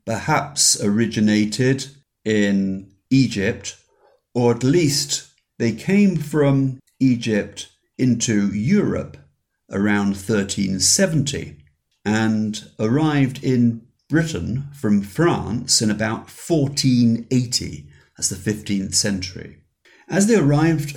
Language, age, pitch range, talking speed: English, 50-69, 95-135 Hz, 90 wpm